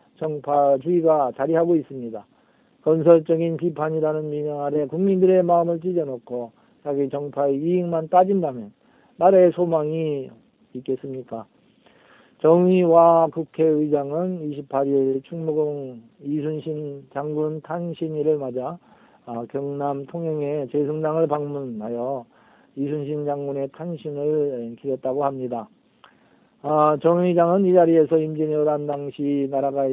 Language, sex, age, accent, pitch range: Korean, male, 40-59, native, 135-165 Hz